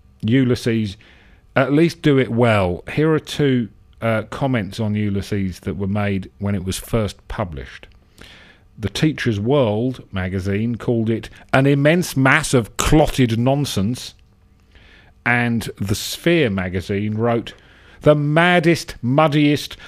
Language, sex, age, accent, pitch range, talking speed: English, male, 40-59, British, 95-140 Hz, 125 wpm